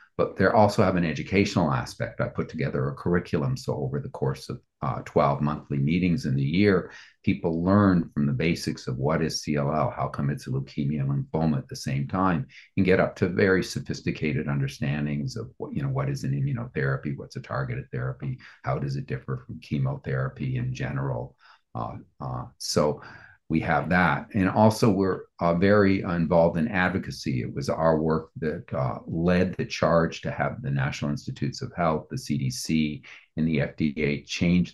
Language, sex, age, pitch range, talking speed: English, male, 50-69, 70-100 Hz, 185 wpm